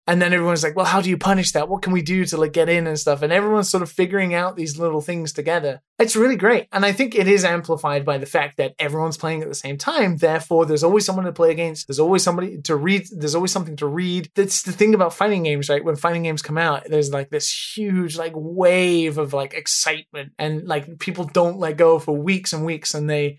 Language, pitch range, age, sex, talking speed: English, 150-180 Hz, 20-39, male, 255 wpm